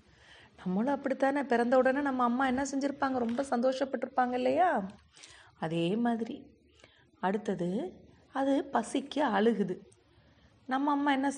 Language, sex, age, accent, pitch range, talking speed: Tamil, female, 30-49, native, 190-260 Hz, 105 wpm